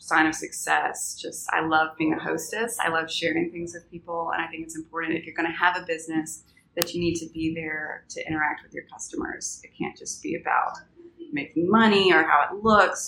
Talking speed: 220 wpm